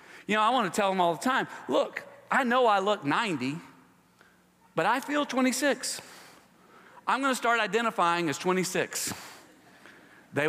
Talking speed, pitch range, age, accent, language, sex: 160 wpm, 110-175 Hz, 40-59, American, English, male